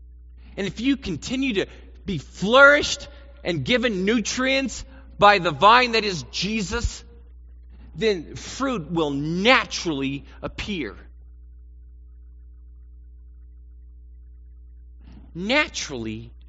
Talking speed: 80 wpm